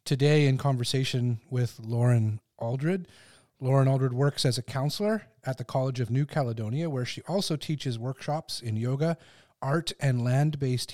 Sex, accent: male, American